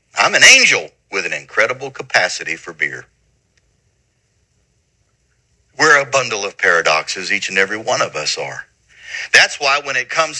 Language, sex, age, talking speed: English, male, 50-69, 150 wpm